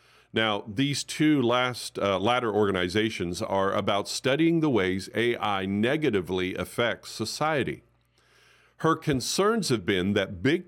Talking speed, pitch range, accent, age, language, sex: 125 wpm, 95-135 Hz, American, 50-69, English, male